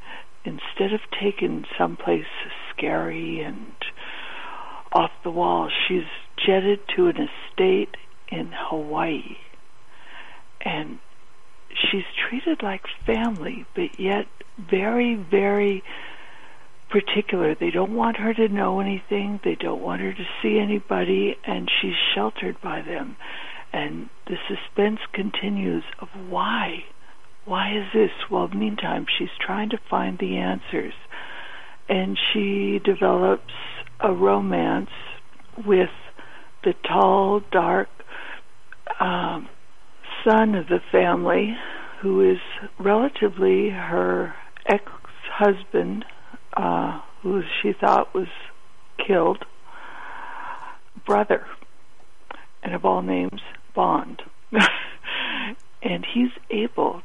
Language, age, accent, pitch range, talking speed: English, 60-79, American, 190-225 Hz, 100 wpm